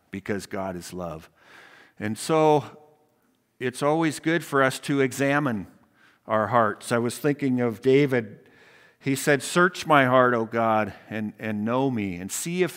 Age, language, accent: 50-69, English, American